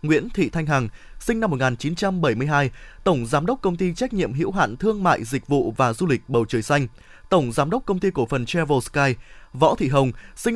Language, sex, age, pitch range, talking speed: Vietnamese, male, 20-39, 145-200 Hz, 220 wpm